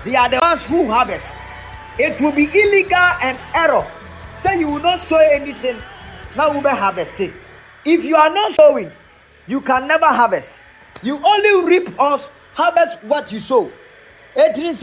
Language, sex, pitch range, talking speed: English, male, 255-320 Hz, 145 wpm